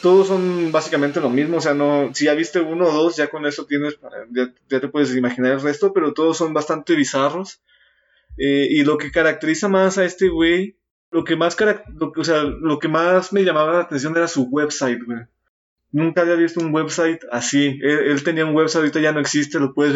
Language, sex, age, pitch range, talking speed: Spanish, male, 20-39, 145-180 Hz, 225 wpm